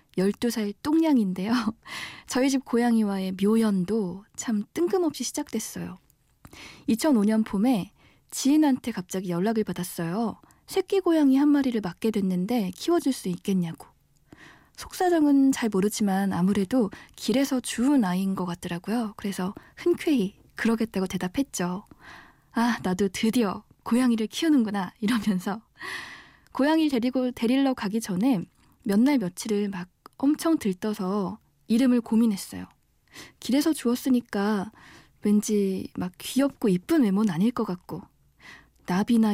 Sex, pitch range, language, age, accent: female, 195-260 Hz, Korean, 20-39, native